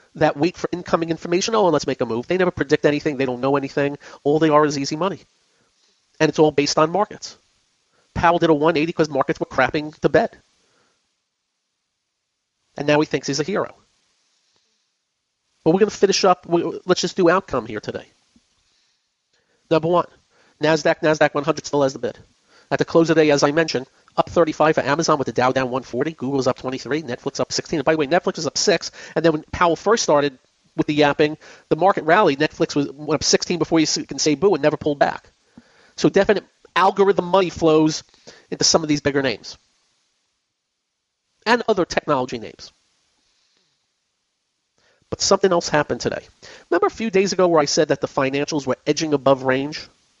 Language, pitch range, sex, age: English, 145-170 Hz, male, 40-59